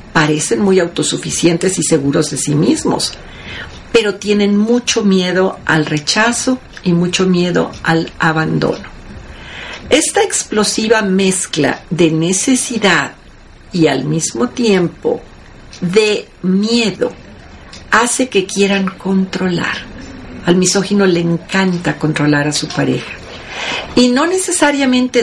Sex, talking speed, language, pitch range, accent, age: female, 105 wpm, Spanish, 175-225 Hz, Mexican, 50-69